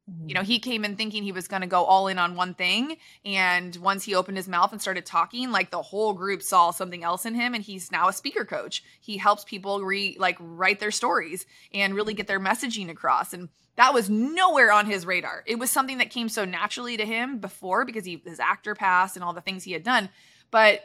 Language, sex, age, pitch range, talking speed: English, female, 20-39, 185-230 Hz, 240 wpm